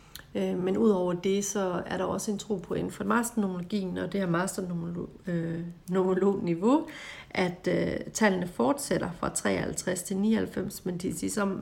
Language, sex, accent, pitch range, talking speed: Danish, female, native, 170-200 Hz, 140 wpm